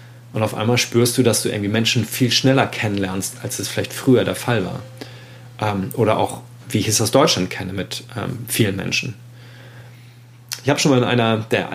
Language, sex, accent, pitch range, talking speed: German, male, German, 110-125 Hz, 190 wpm